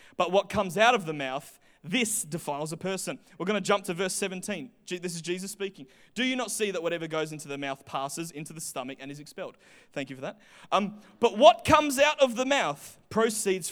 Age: 30-49